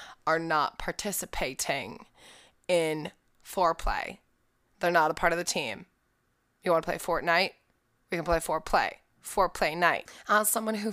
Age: 20-39